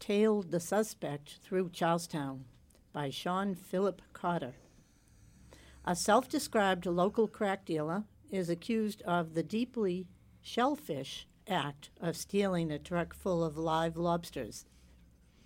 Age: 60-79